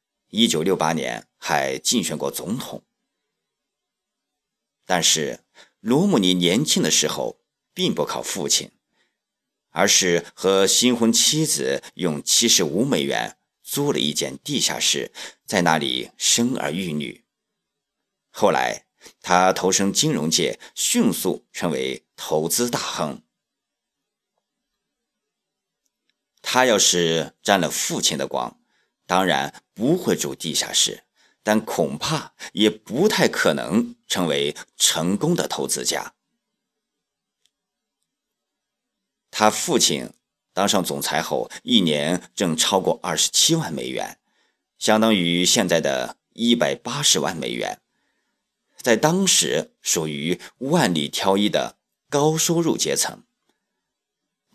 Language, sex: Chinese, male